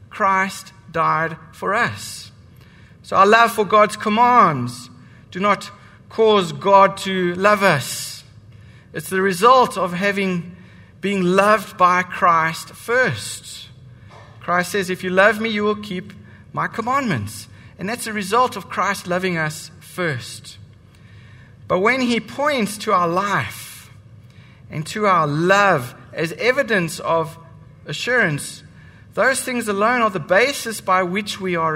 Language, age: English, 60-79